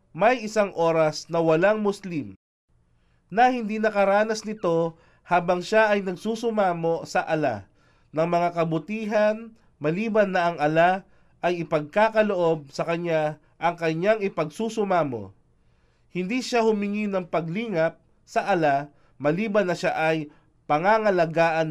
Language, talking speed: Filipino, 115 wpm